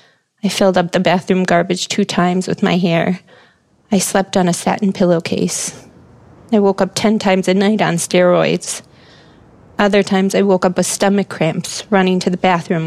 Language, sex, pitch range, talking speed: English, female, 180-205 Hz, 175 wpm